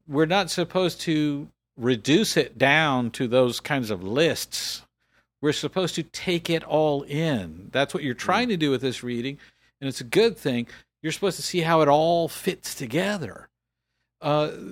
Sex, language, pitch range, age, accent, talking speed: male, English, 130-170 Hz, 50-69, American, 175 wpm